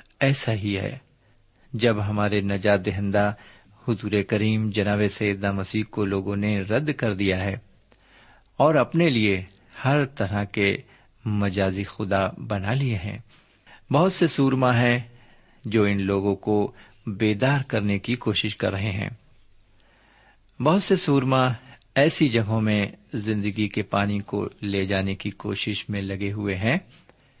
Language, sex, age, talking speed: Urdu, male, 50-69, 140 wpm